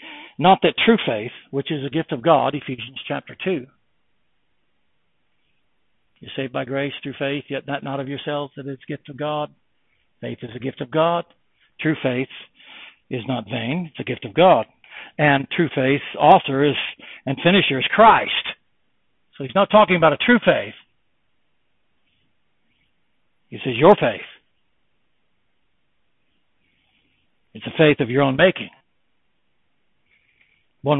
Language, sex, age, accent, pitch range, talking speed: English, male, 60-79, American, 135-160 Hz, 145 wpm